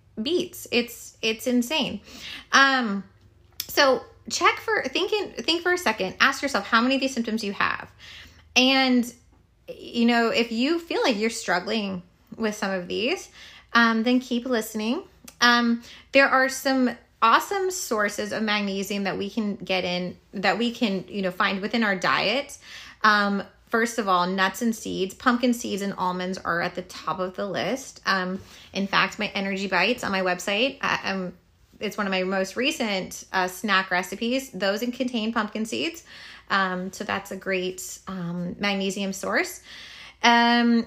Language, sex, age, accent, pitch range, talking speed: English, female, 20-39, American, 195-260 Hz, 165 wpm